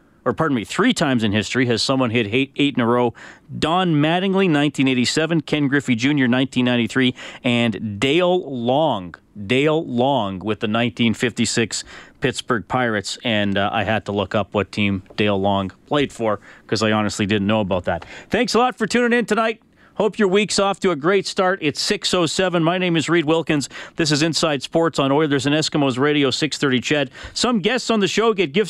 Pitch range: 125-180 Hz